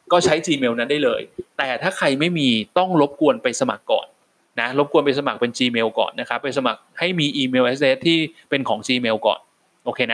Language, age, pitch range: Thai, 20-39, 135-205 Hz